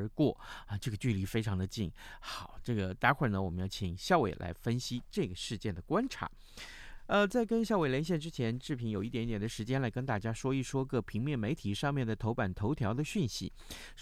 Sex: male